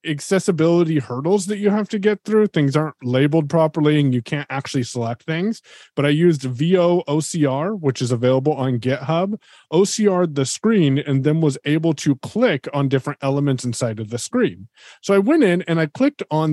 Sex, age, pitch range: male, 30-49, 125-165 Hz